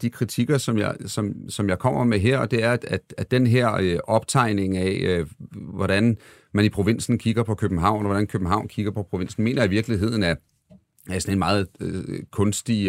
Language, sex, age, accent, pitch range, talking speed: Danish, male, 40-59, native, 90-110 Hz, 205 wpm